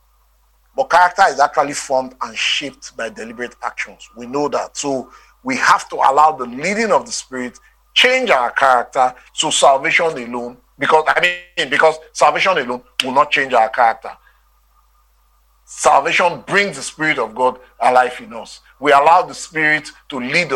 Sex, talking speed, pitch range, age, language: male, 160 wpm, 125-160 Hz, 40-59, English